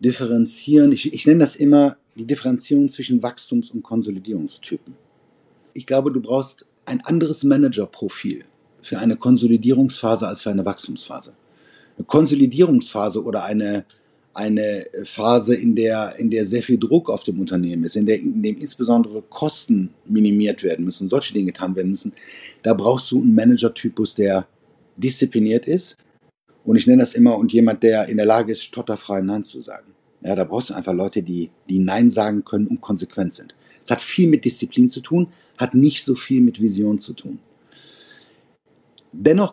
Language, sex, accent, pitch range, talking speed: English, male, German, 110-155 Hz, 170 wpm